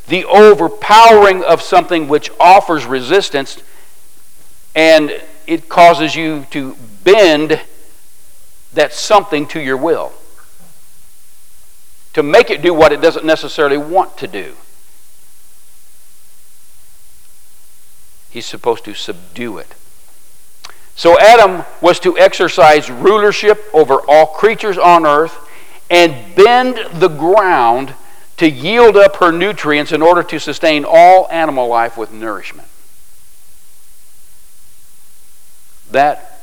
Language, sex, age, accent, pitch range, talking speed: English, male, 60-79, American, 115-185 Hz, 105 wpm